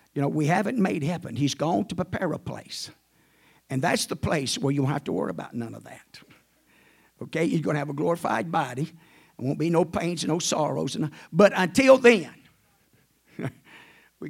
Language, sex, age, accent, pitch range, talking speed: English, male, 50-69, American, 145-170 Hz, 200 wpm